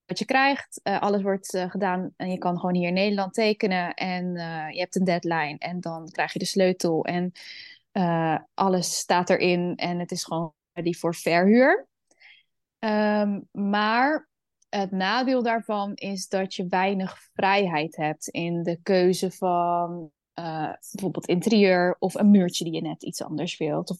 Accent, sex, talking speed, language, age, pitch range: Dutch, female, 170 wpm, Dutch, 10-29, 180-210 Hz